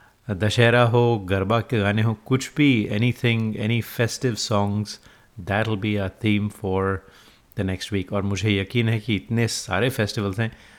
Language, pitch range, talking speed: Hindi, 100-120 Hz, 165 wpm